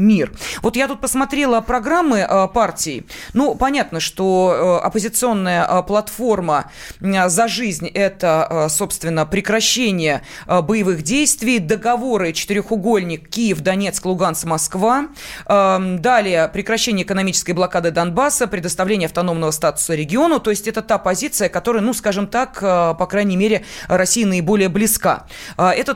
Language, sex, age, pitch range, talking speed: Russian, female, 20-39, 180-230 Hz, 110 wpm